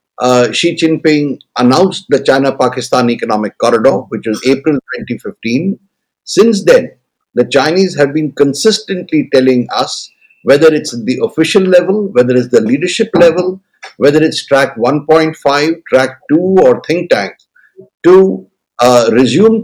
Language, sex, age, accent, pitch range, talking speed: English, male, 60-79, Indian, 125-170 Hz, 130 wpm